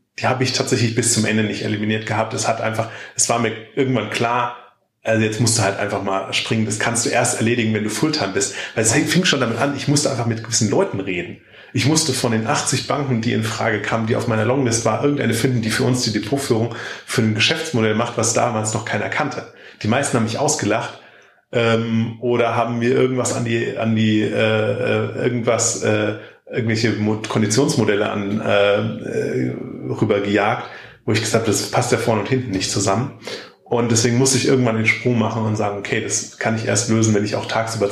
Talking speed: 210 wpm